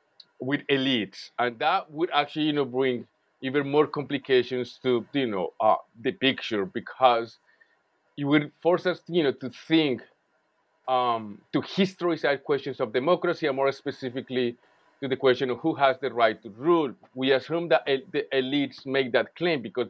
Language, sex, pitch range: English, male, 125-155 Hz